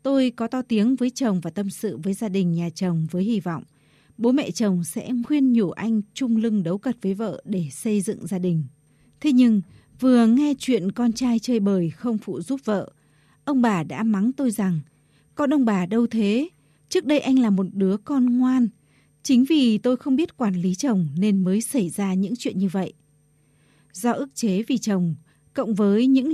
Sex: female